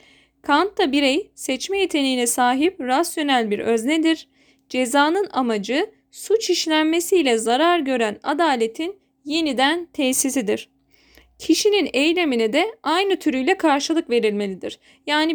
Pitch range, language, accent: 255-340 Hz, Turkish, native